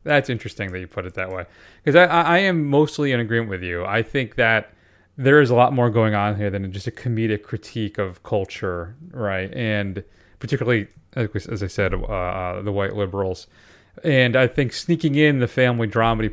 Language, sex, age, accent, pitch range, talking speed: English, male, 30-49, American, 105-140 Hz, 195 wpm